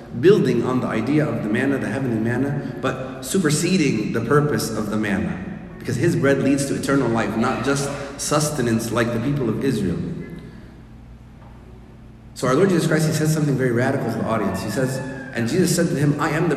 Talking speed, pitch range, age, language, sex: 200 wpm, 115-150 Hz, 30-49, English, male